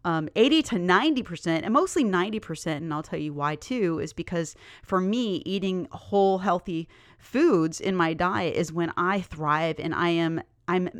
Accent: American